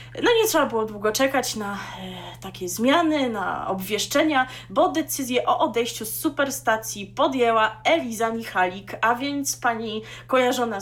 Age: 20-39